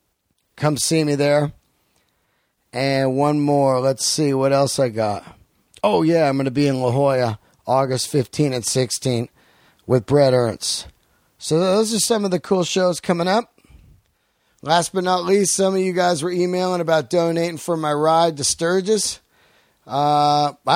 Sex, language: male, English